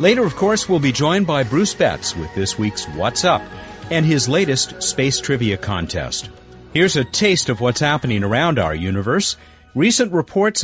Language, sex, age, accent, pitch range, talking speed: English, male, 50-69, American, 110-160 Hz, 175 wpm